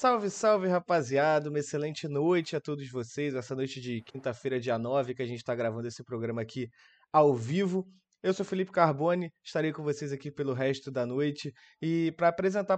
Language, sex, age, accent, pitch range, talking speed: Portuguese, male, 20-39, Brazilian, 135-185 Hz, 190 wpm